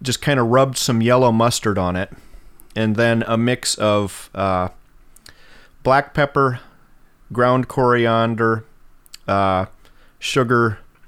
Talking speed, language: 115 wpm, English